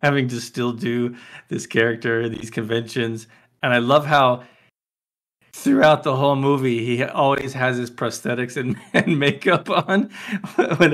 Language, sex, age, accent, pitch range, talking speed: English, male, 40-59, American, 115-135 Hz, 145 wpm